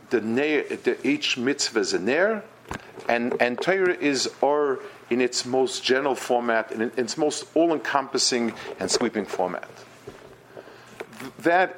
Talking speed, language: 145 wpm, English